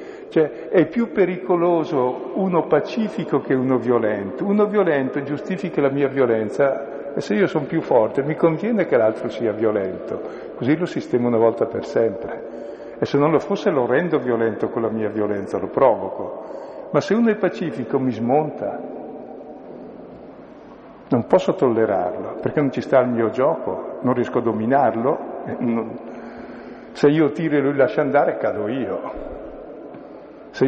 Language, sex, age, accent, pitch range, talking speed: Italian, male, 50-69, native, 120-165 Hz, 155 wpm